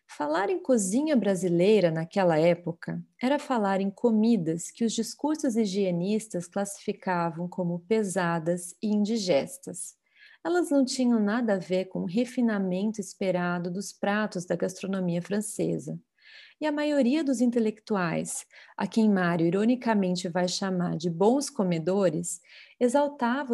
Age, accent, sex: 30-49, Brazilian, female